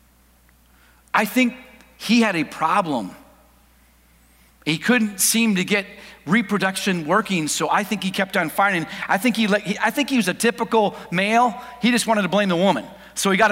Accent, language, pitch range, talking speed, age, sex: American, English, 190-240 Hz, 185 wpm, 40-59, male